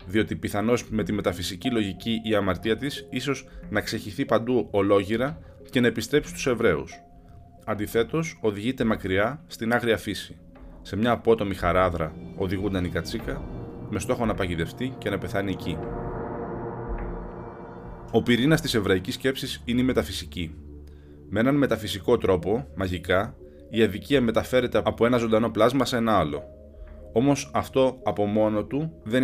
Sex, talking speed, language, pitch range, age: male, 140 wpm, Greek, 85-120 Hz, 20-39